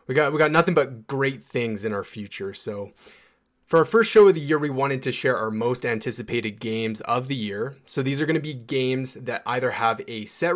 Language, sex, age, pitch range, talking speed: English, male, 20-39, 110-135 Hz, 240 wpm